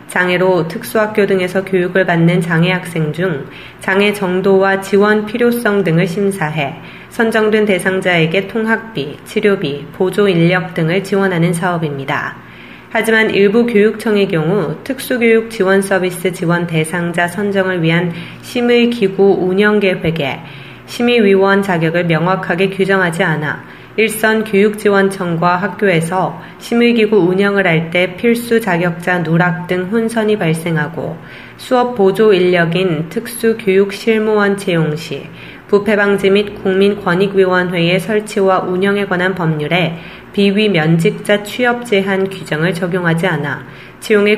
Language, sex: Korean, female